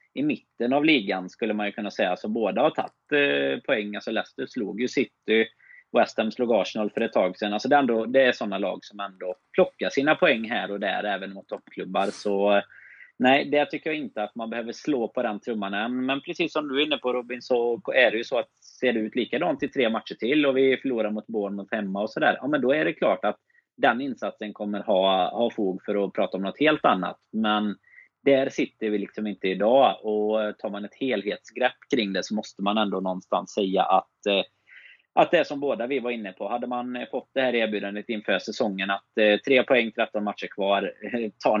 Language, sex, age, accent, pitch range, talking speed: Swedish, male, 30-49, native, 100-125 Hz, 225 wpm